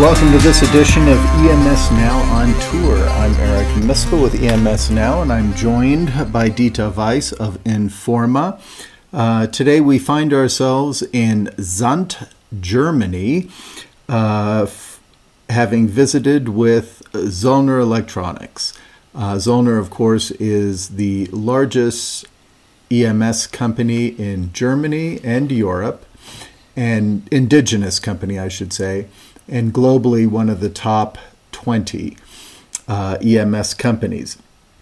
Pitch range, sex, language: 105-130 Hz, male, English